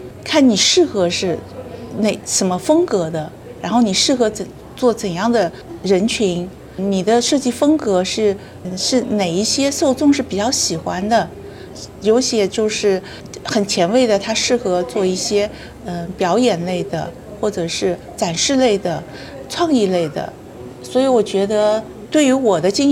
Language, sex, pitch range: Chinese, female, 180-225 Hz